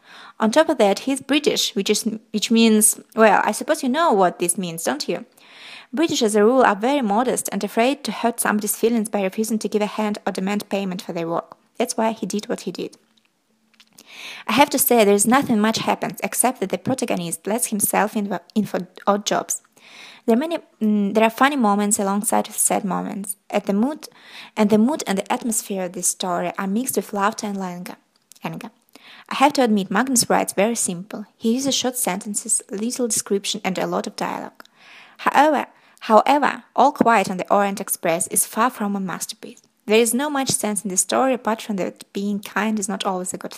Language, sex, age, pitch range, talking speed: English, female, 20-39, 200-235 Hz, 210 wpm